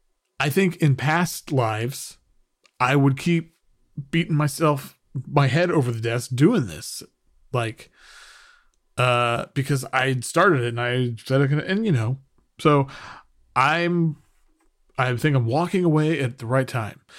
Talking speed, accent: 145 wpm, American